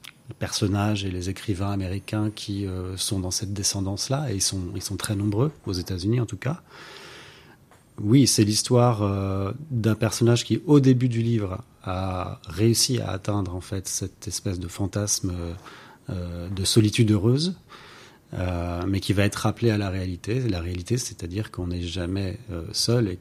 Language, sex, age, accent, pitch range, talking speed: French, male, 30-49, French, 95-115 Hz, 175 wpm